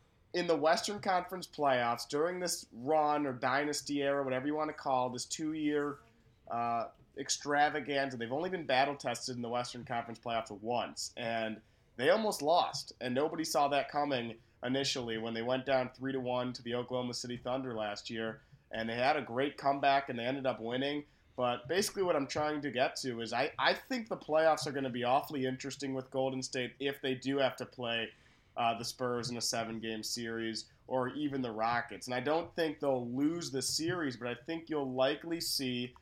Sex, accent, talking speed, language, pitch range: male, American, 200 wpm, English, 125-150 Hz